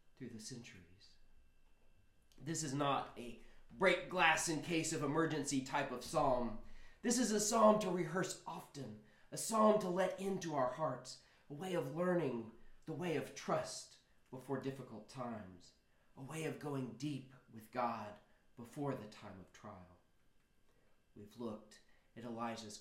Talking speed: 135 wpm